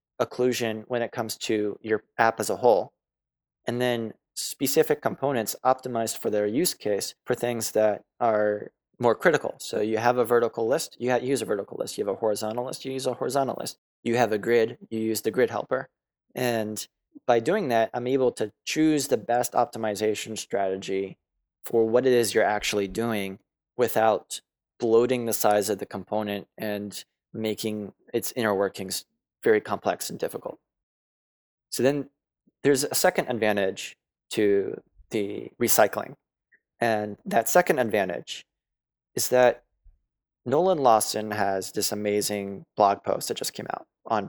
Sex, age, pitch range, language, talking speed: male, 20-39, 105-125 Hz, English, 160 wpm